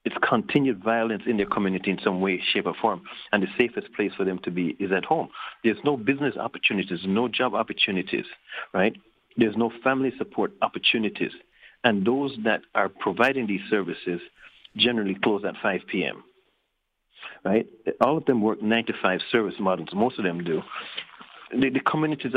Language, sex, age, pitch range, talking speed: English, male, 50-69, 100-125 Hz, 170 wpm